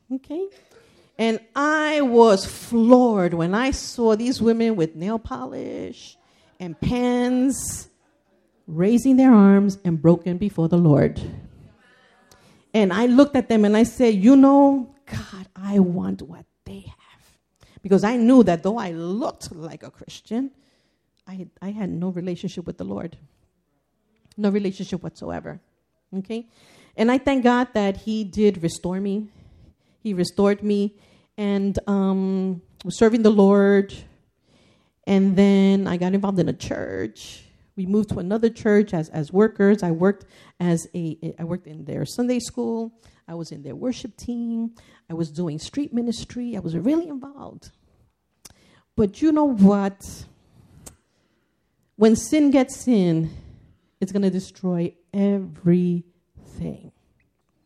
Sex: female